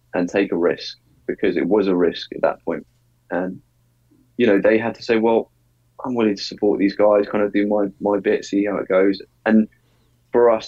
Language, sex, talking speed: English, male, 220 wpm